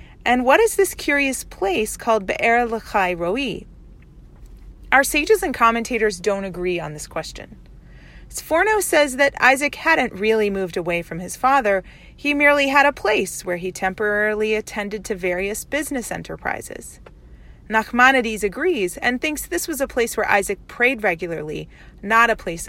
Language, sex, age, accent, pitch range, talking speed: English, female, 30-49, American, 180-245 Hz, 155 wpm